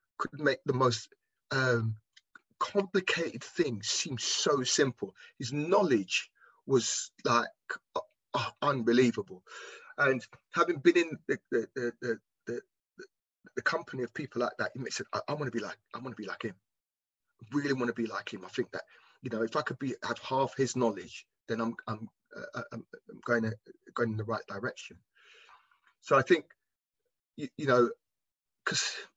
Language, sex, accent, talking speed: English, male, British, 175 wpm